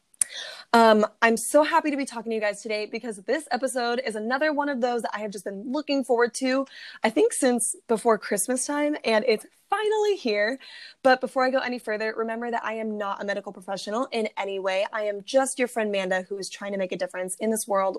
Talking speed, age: 235 wpm, 20-39